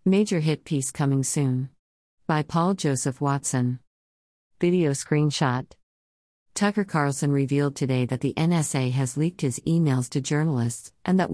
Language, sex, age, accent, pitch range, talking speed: English, female, 50-69, American, 130-150 Hz, 140 wpm